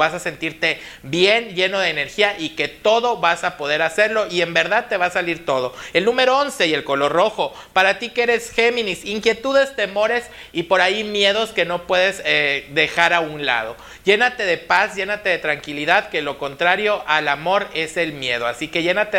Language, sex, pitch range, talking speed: Spanish, male, 155-210 Hz, 205 wpm